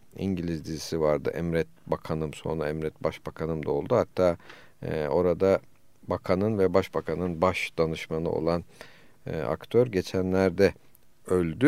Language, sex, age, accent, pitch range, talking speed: Turkish, male, 50-69, native, 90-120 Hz, 120 wpm